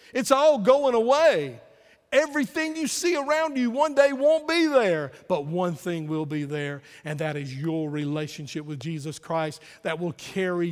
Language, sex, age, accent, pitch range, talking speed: English, male, 50-69, American, 150-185 Hz, 175 wpm